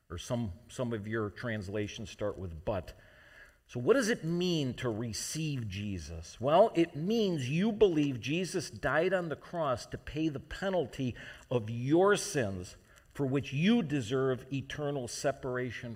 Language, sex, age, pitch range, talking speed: English, male, 50-69, 110-155 Hz, 150 wpm